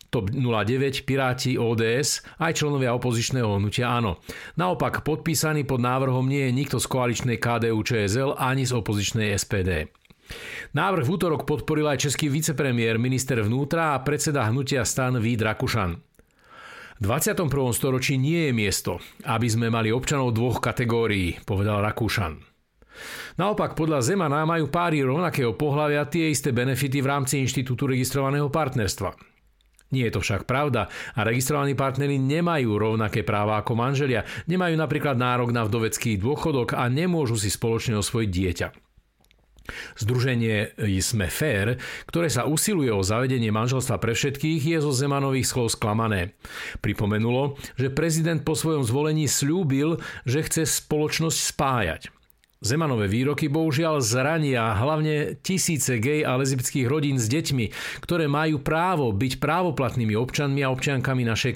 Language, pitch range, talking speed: Slovak, 115-150 Hz, 135 wpm